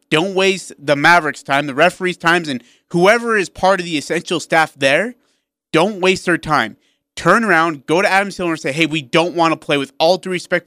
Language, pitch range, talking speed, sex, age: English, 145-185 Hz, 220 wpm, male, 30-49